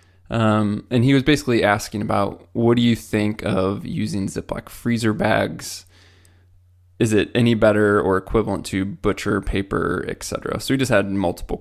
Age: 20-39